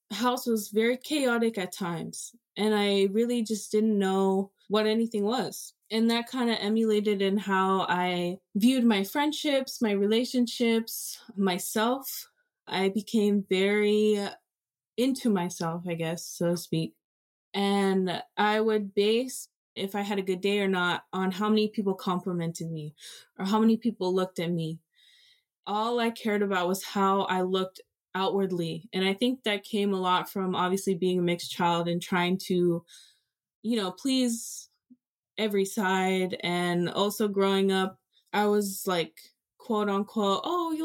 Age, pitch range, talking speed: 20-39, 185-225 Hz, 155 wpm